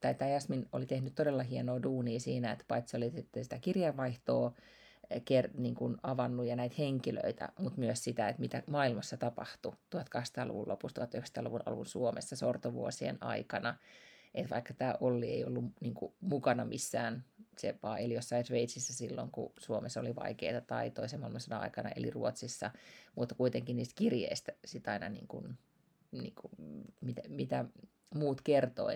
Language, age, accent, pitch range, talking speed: Finnish, 30-49, native, 115-140 Hz, 155 wpm